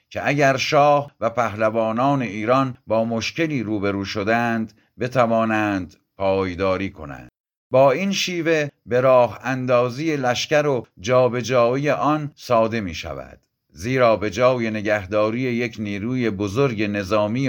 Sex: male